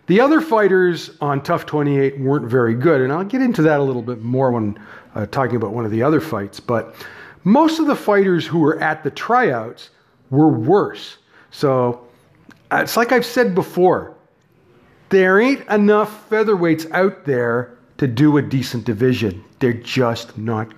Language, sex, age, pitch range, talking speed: English, male, 40-59, 115-165 Hz, 175 wpm